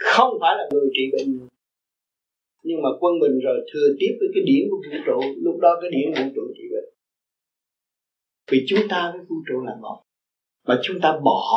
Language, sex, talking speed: Vietnamese, male, 205 wpm